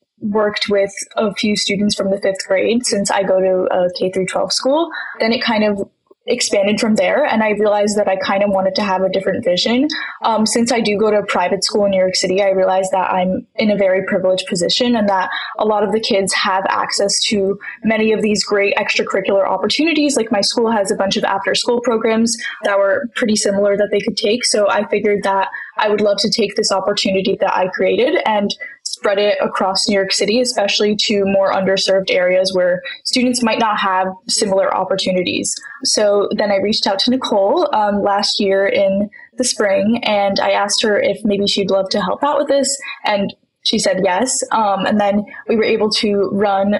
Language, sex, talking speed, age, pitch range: English, female, 210 wpm, 10-29, 195-225 Hz